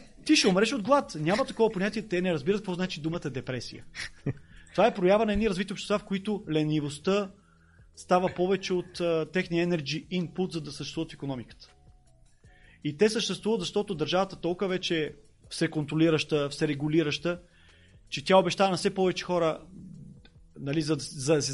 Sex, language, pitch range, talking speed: male, Bulgarian, 140-190 Hz, 165 wpm